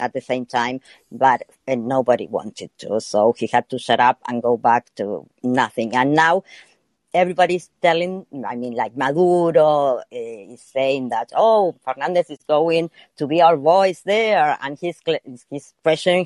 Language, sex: English, female